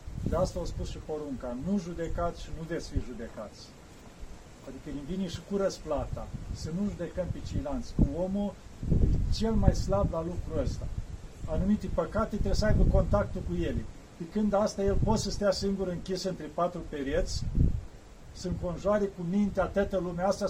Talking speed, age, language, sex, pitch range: 170 wpm, 40-59, Romanian, male, 160-195 Hz